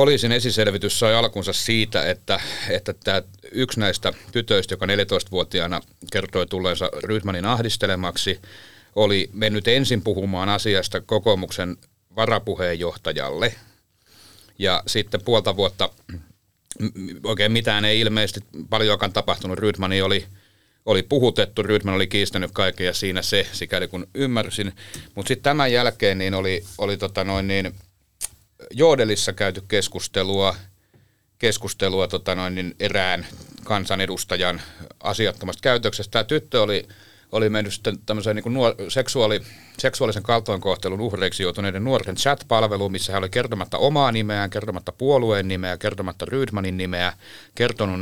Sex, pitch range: male, 95-110 Hz